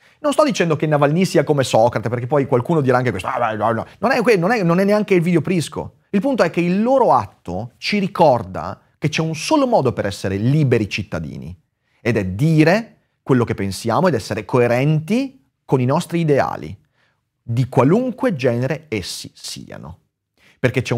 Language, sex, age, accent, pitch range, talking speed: Italian, male, 30-49, native, 105-165 Hz, 175 wpm